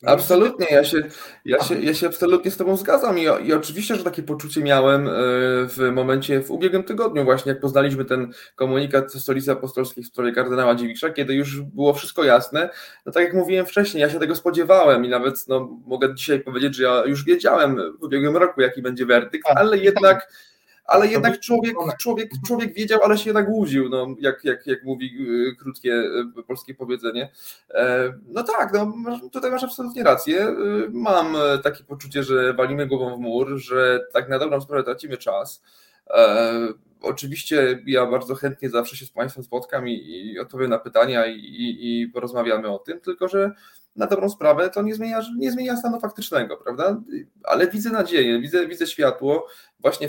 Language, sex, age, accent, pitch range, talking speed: Polish, male, 20-39, native, 130-185 Hz, 175 wpm